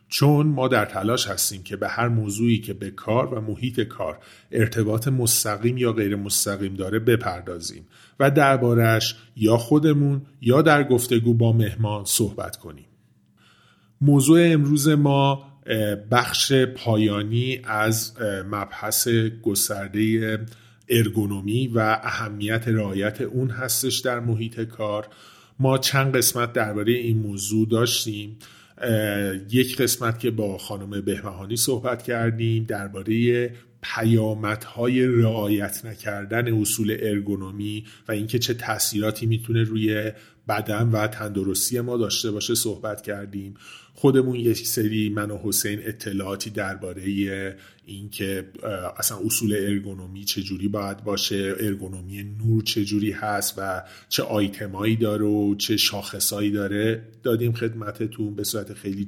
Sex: male